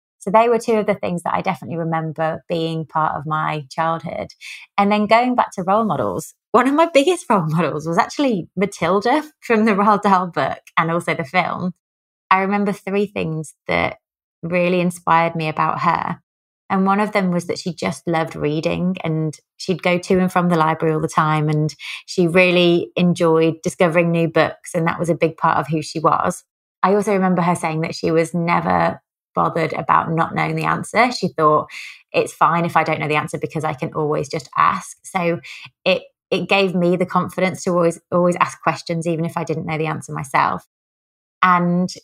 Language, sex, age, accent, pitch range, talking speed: English, female, 20-39, British, 160-185 Hz, 200 wpm